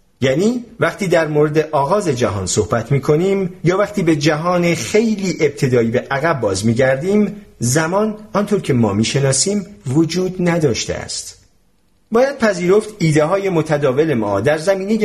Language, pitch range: Persian, 125-190 Hz